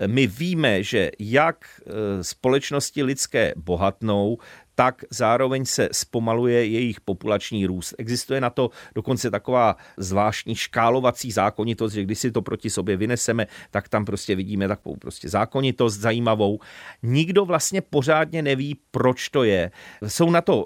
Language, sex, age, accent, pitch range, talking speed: Czech, male, 40-59, native, 100-130 Hz, 135 wpm